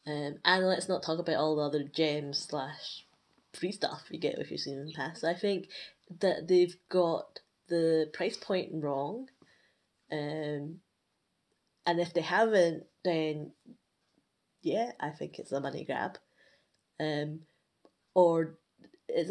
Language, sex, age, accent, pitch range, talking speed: English, female, 20-39, British, 155-190 Hz, 145 wpm